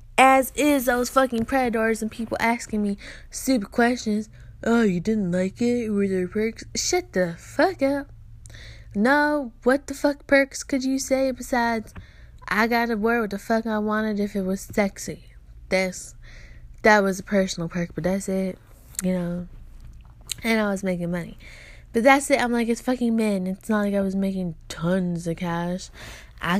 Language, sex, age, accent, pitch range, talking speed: English, female, 10-29, American, 180-235 Hz, 180 wpm